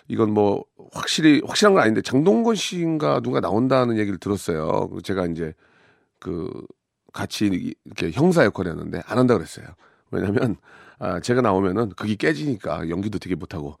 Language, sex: Korean, male